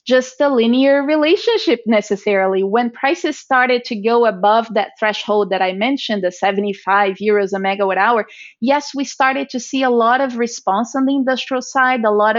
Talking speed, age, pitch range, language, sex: 180 wpm, 30-49, 210-265 Hz, English, female